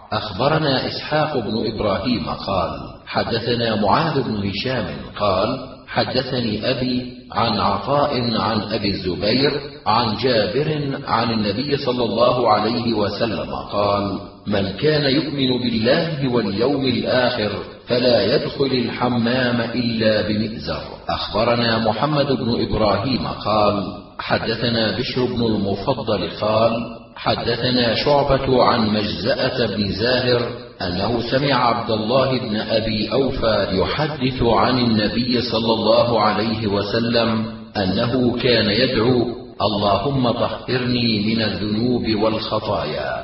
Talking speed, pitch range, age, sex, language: 105 wpm, 105-125 Hz, 40-59, male, Arabic